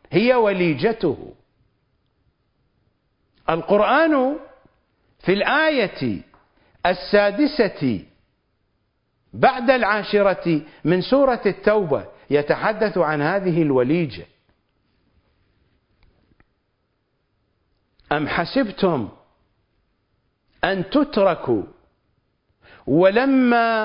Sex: male